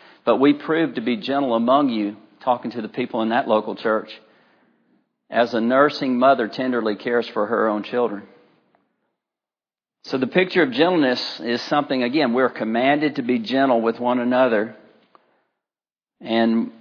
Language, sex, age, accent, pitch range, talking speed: English, male, 50-69, American, 115-140 Hz, 155 wpm